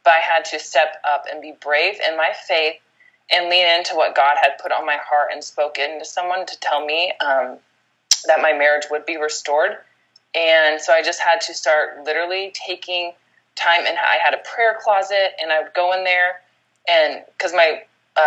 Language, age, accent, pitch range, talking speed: English, 20-39, American, 150-185 Hz, 195 wpm